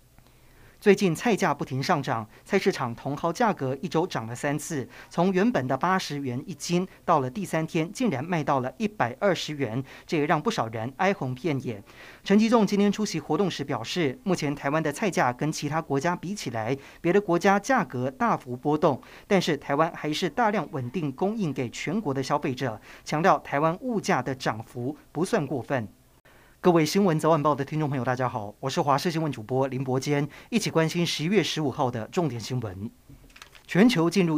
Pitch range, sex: 130-175 Hz, male